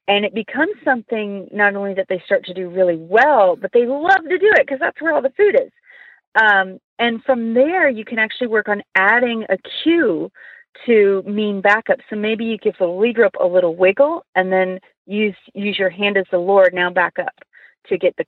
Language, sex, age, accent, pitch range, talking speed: English, female, 40-59, American, 185-250 Hz, 215 wpm